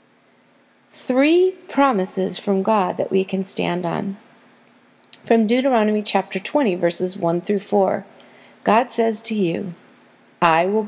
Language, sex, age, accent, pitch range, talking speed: English, female, 40-59, American, 195-290 Hz, 125 wpm